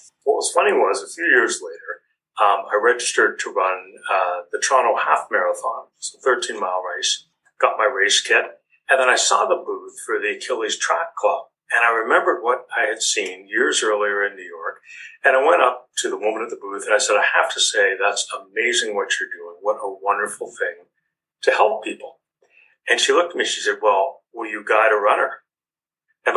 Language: English